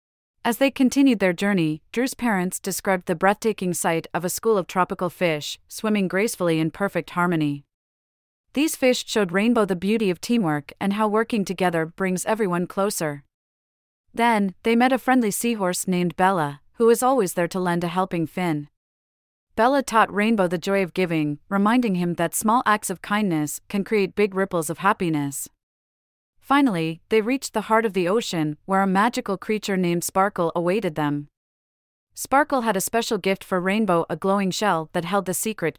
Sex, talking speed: female, 175 wpm